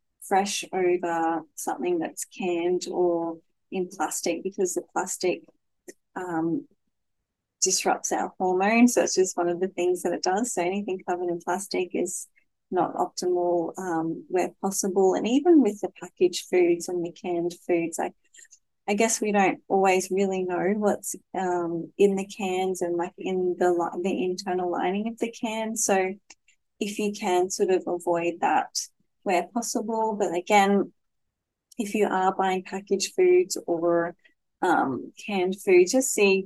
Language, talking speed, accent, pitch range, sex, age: English, 155 wpm, Australian, 175-205 Hz, female, 20-39